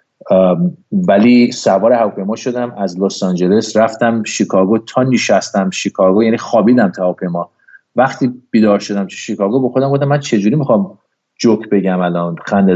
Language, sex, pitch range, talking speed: Persian, male, 100-125 Hz, 155 wpm